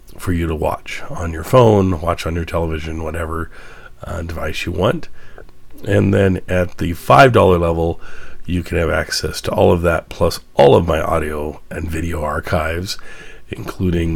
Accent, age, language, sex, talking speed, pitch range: American, 40-59, English, male, 165 wpm, 80-90 Hz